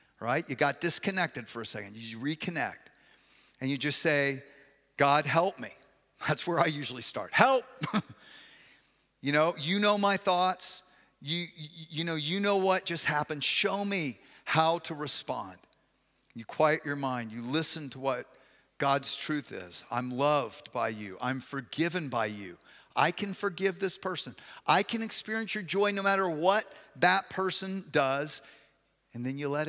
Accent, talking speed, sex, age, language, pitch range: American, 165 wpm, male, 50-69, English, 140-190 Hz